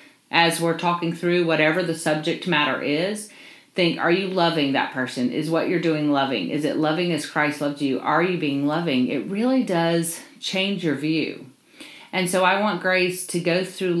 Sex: female